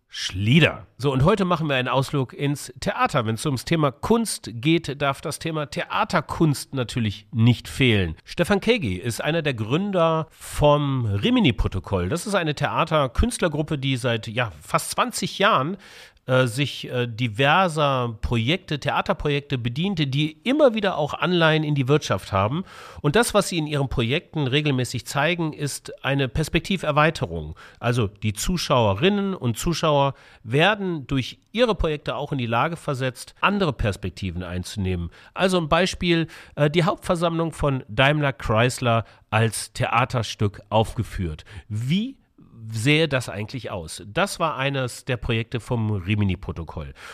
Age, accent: 40-59, German